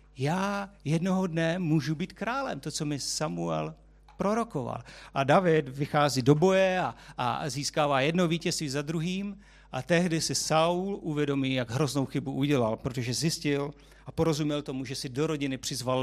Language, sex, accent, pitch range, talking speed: Czech, male, native, 135-165 Hz, 155 wpm